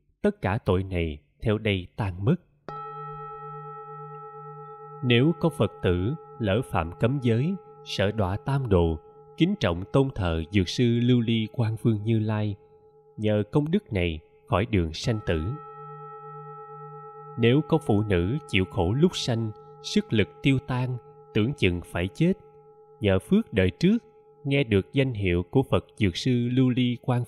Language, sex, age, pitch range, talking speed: Vietnamese, male, 20-39, 100-145 Hz, 155 wpm